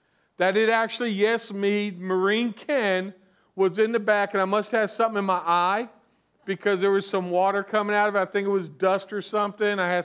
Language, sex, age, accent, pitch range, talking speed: English, male, 50-69, American, 175-220 Hz, 220 wpm